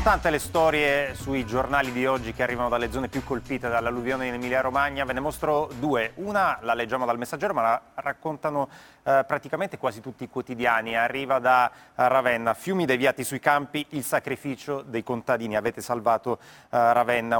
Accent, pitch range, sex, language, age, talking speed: native, 115-140 Hz, male, Italian, 30-49, 170 wpm